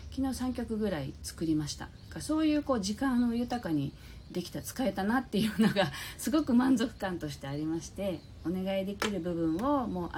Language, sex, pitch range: Japanese, female, 155-240 Hz